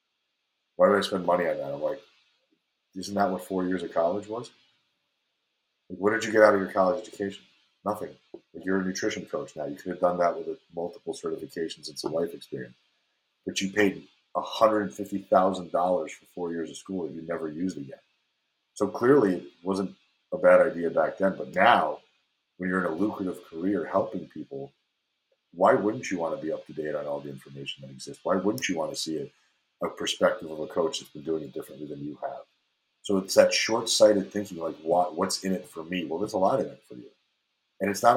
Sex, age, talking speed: male, 40-59, 220 wpm